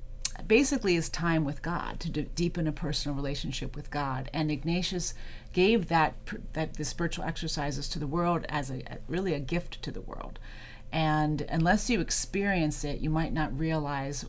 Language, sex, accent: English, female, American